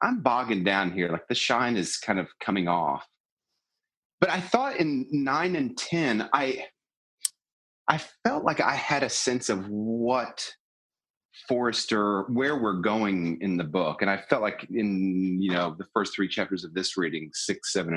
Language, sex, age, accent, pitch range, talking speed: English, male, 30-49, American, 90-115 Hz, 175 wpm